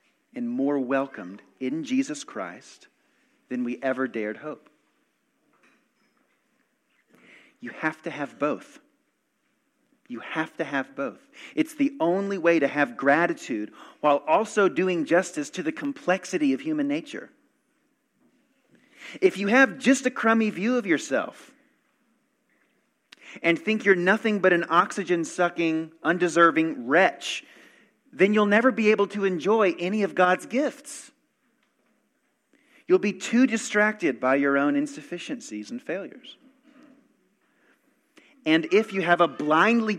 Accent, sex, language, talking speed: American, male, English, 125 wpm